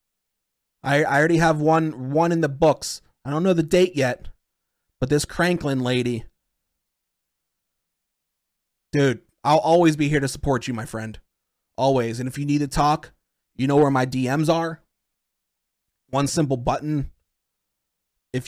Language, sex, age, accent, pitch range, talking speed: English, male, 30-49, American, 115-150 Hz, 150 wpm